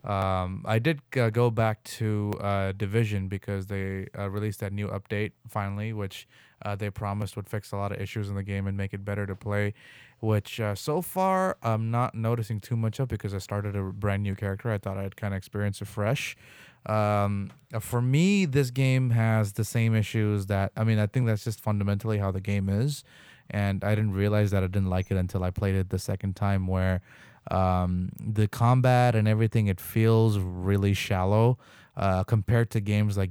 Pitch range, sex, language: 100-115 Hz, male, English